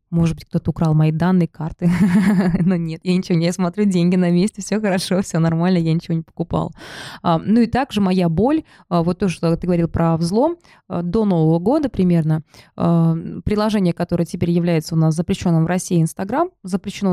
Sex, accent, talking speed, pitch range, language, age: female, native, 180 wpm, 170-210 Hz, Russian, 20-39